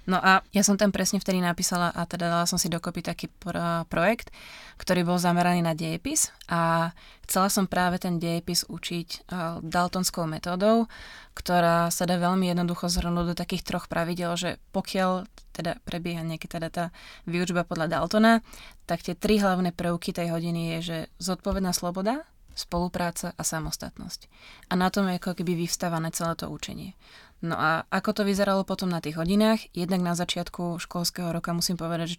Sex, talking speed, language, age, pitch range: female, 170 wpm, Slovak, 20-39, 170-185 Hz